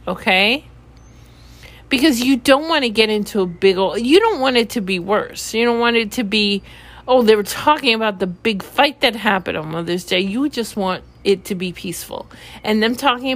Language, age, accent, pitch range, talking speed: English, 40-59, American, 185-240 Hz, 210 wpm